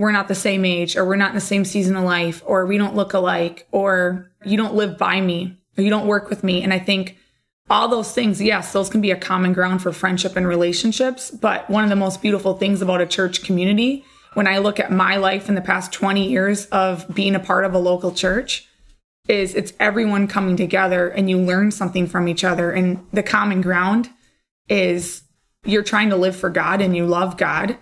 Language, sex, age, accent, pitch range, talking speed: English, female, 20-39, American, 185-210 Hz, 225 wpm